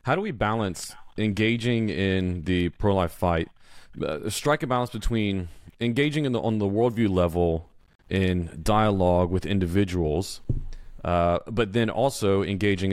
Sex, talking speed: male, 140 wpm